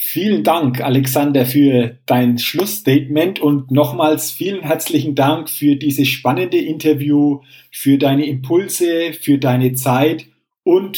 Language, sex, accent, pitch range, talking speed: German, male, German, 130-175 Hz, 120 wpm